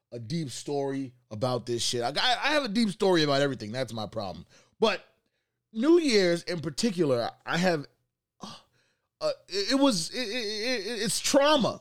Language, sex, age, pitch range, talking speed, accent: English, male, 30-49, 125-210 Hz, 150 wpm, American